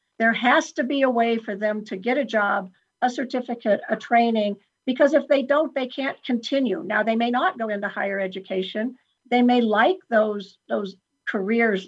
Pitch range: 210-255 Hz